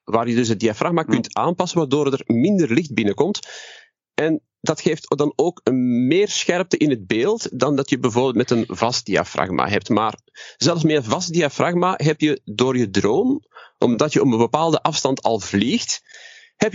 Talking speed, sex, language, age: 185 wpm, male, Dutch, 40-59